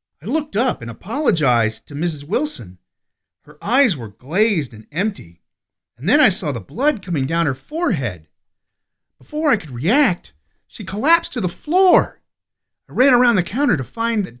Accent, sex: American, male